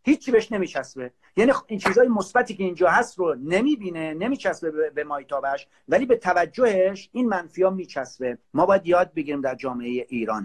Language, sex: Persian, male